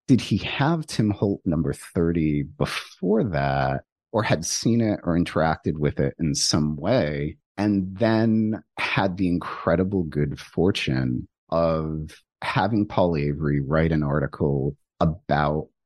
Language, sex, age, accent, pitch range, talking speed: English, male, 30-49, American, 75-95 Hz, 130 wpm